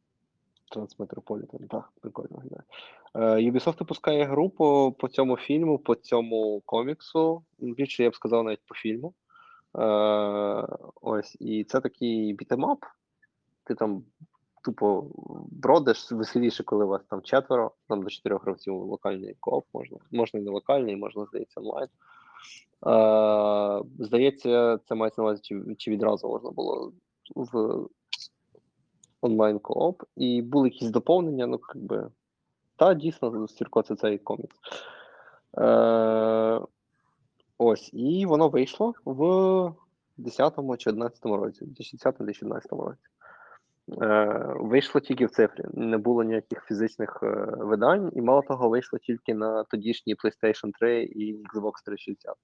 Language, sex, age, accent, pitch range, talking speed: Ukrainian, male, 20-39, native, 110-140 Hz, 120 wpm